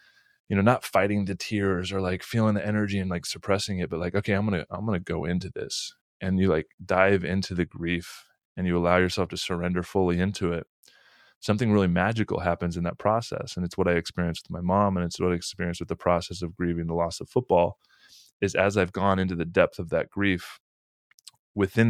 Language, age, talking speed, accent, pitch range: English, 20-39, 225 wpm, American, 85-100 Hz